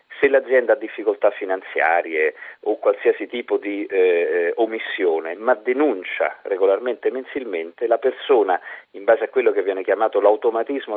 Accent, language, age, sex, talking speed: native, Italian, 40-59, male, 140 wpm